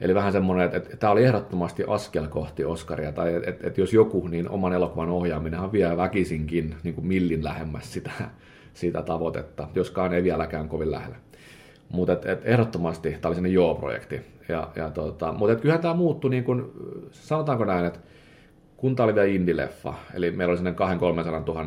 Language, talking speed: Finnish, 175 wpm